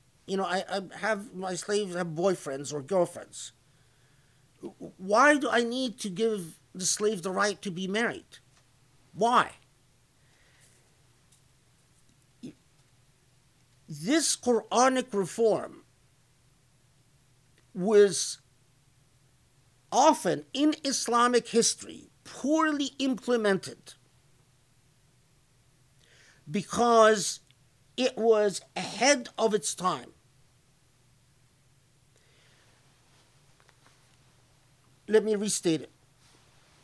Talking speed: 75 wpm